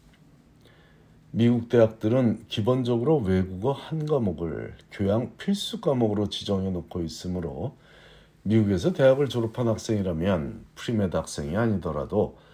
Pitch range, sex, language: 90-130 Hz, male, Korean